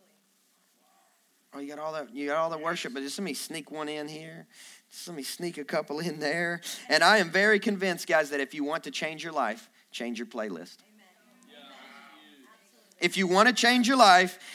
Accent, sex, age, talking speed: American, male, 40-59, 195 wpm